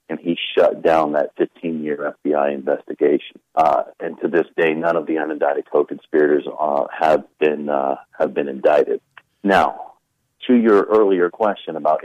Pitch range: 80-95 Hz